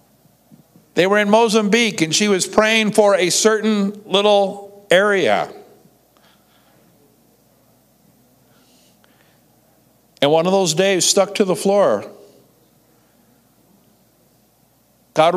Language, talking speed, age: English, 90 wpm, 50-69